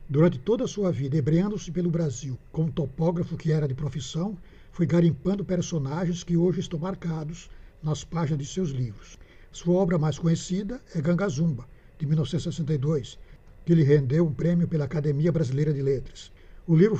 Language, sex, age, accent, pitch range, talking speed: Portuguese, male, 60-79, Brazilian, 150-175 Hz, 160 wpm